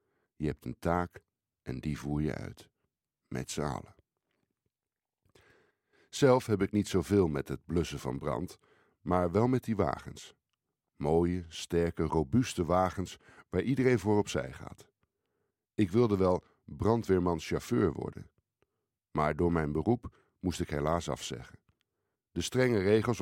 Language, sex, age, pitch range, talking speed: Dutch, male, 60-79, 75-105 Hz, 130 wpm